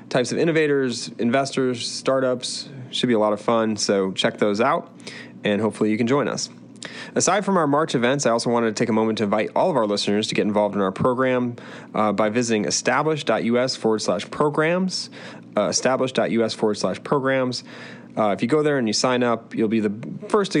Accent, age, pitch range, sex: American, 30-49, 110-135 Hz, male